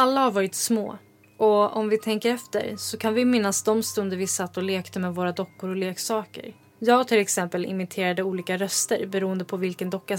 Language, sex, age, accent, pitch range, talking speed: Swedish, female, 20-39, native, 190-220 Hz, 200 wpm